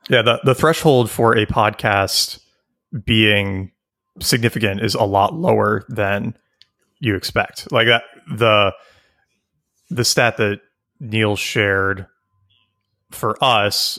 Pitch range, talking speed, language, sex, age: 100-120 Hz, 110 wpm, English, male, 30-49